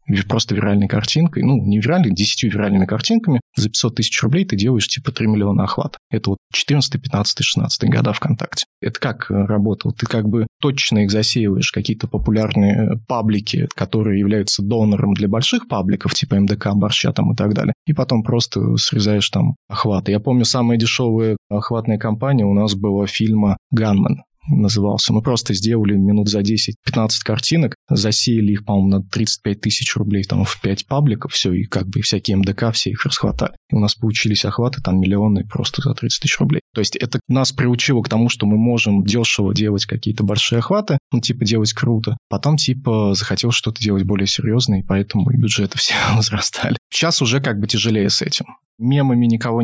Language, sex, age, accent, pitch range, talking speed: Russian, male, 20-39, native, 105-125 Hz, 180 wpm